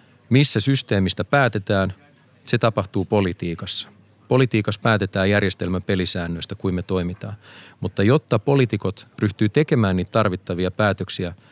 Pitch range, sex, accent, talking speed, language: 95-115 Hz, male, native, 110 wpm, Finnish